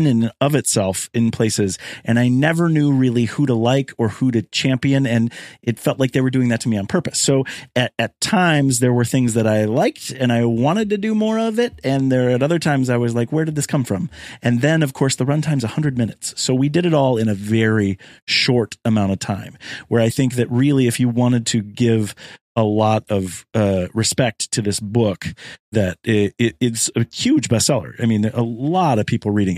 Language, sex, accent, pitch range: English, male, American, 110-140 Hz